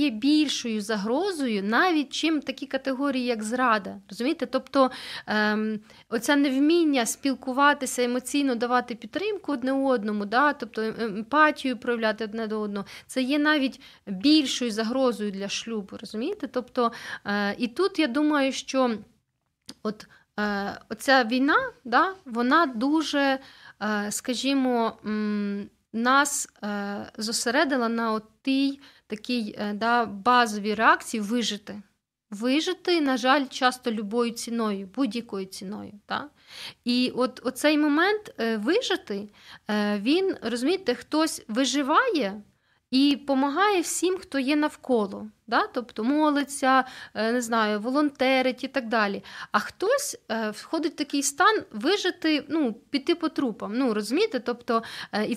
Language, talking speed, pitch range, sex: Ukrainian, 120 wpm, 220-285 Hz, female